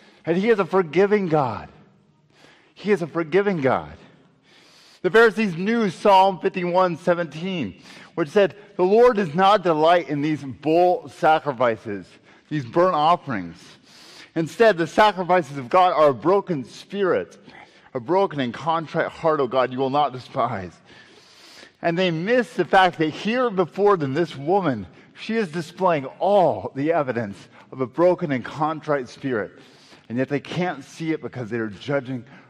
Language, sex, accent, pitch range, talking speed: English, male, American, 125-180 Hz, 155 wpm